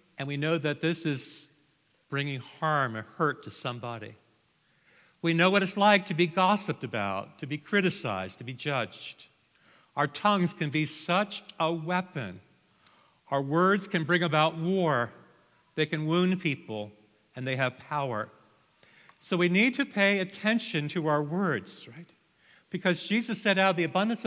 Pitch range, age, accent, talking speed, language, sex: 130-185 Hz, 50-69, American, 160 wpm, English, male